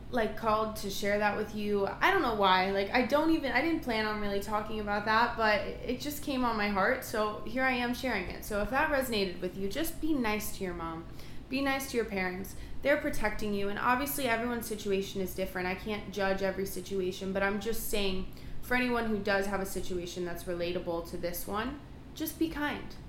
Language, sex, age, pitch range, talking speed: English, female, 20-39, 190-250 Hz, 225 wpm